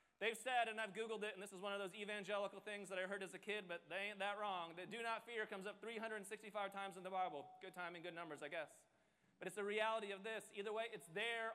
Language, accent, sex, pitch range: English, American, male, 180-230 Hz